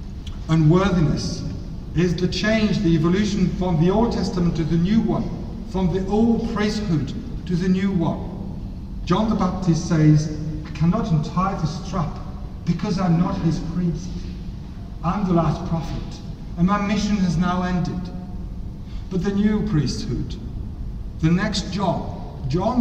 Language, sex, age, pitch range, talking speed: English, male, 50-69, 150-190 Hz, 140 wpm